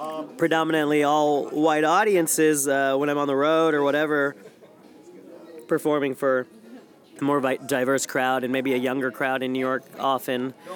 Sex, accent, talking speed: male, American, 150 wpm